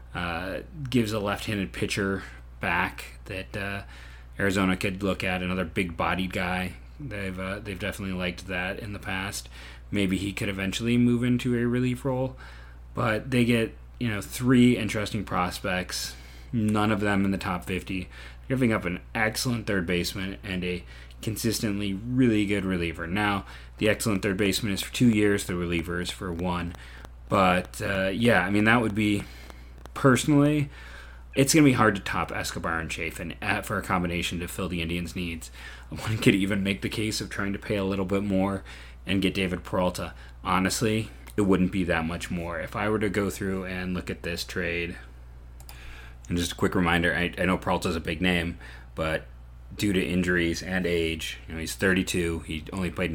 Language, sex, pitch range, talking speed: English, male, 80-105 Hz, 185 wpm